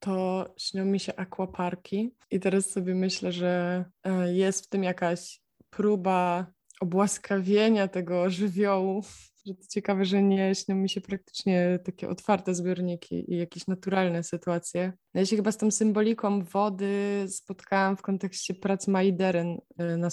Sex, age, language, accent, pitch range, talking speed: female, 20-39, Polish, native, 175-195 Hz, 140 wpm